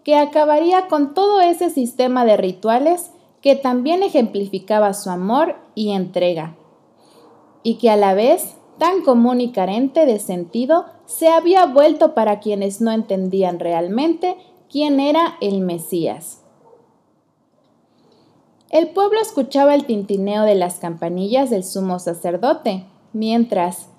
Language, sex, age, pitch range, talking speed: Spanish, female, 20-39, 195-315 Hz, 125 wpm